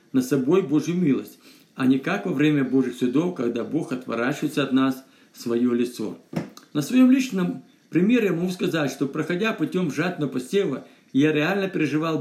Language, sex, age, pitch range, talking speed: Russian, male, 50-69, 135-190 Hz, 165 wpm